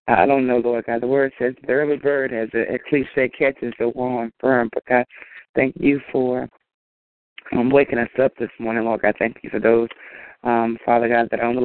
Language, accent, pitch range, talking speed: English, American, 115-130 Hz, 220 wpm